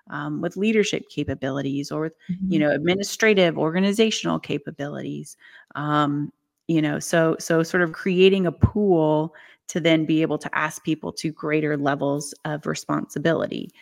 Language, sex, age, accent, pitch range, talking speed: English, female, 30-49, American, 155-185 Hz, 145 wpm